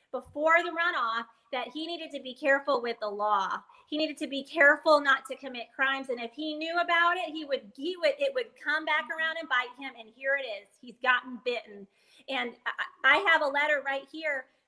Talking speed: 220 wpm